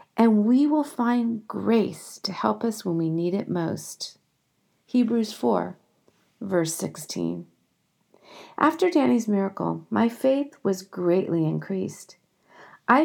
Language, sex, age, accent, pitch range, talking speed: English, female, 40-59, American, 195-275 Hz, 120 wpm